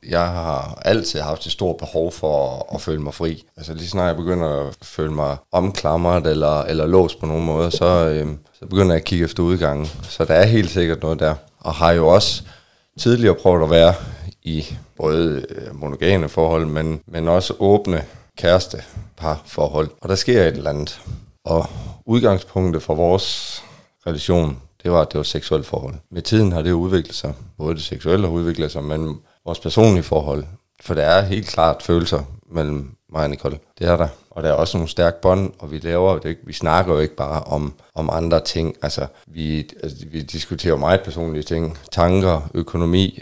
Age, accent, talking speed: 30-49, native, 195 wpm